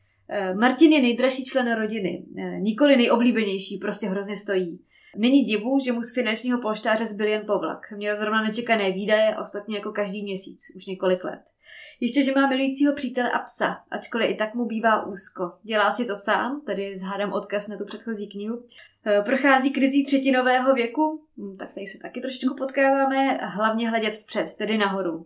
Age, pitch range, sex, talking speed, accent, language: 20-39, 200-240 Hz, female, 170 wpm, native, Czech